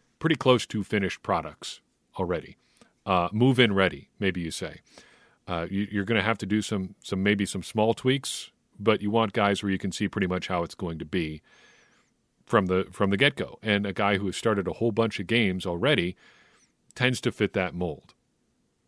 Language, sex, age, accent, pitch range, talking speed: English, male, 40-59, American, 95-115 Hz, 205 wpm